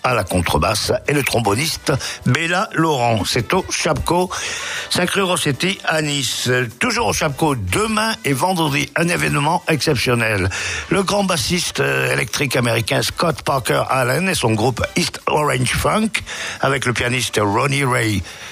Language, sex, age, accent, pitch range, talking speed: French, male, 60-79, French, 100-155 Hz, 145 wpm